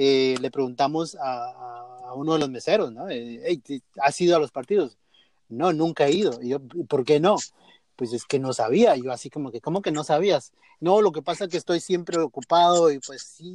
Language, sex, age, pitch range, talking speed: English, male, 30-49, 150-200 Hz, 225 wpm